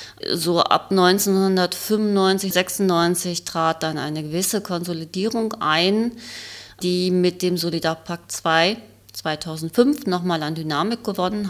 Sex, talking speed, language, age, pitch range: female, 105 wpm, German, 30-49, 160-190 Hz